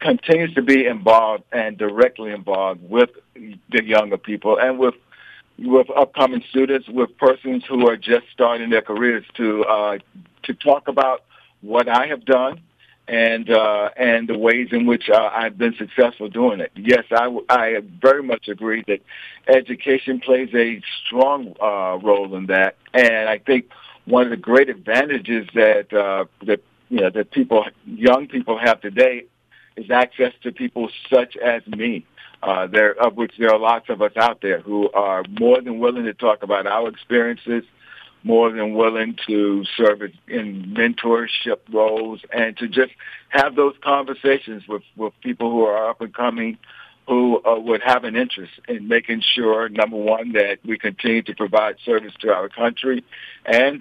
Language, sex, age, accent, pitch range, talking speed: English, male, 60-79, American, 110-130 Hz, 170 wpm